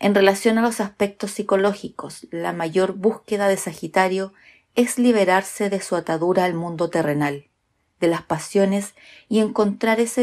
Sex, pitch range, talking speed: female, 160-215 Hz, 145 wpm